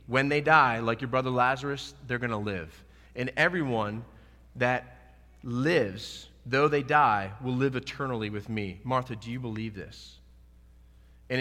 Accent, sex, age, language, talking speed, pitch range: American, male, 30-49, English, 155 wpm, 95-135 Hz